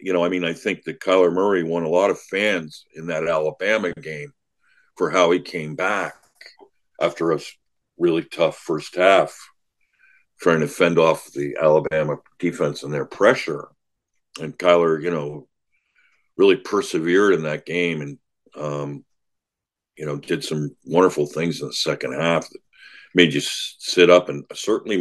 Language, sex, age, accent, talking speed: English, male, 50-69, American, 160 wpm